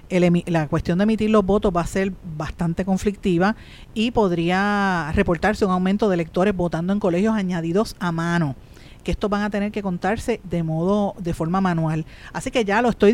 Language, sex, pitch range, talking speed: Spanish, female, 175-220 Hz, 185 wpm